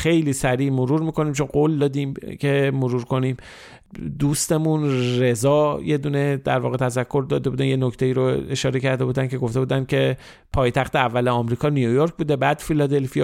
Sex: male